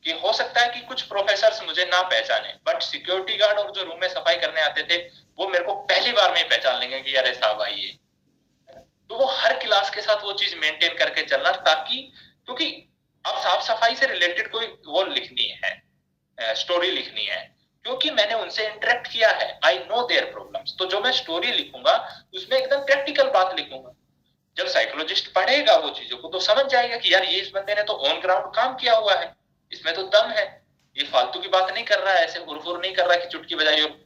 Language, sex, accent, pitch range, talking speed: Hindi, male, native, 170-255 Hz, 205 wpm